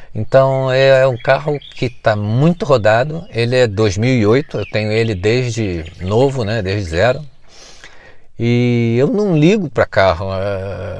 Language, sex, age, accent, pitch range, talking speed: Portuguese, male, 40-59, Brazilian, 105-140 Hz, 135 wpm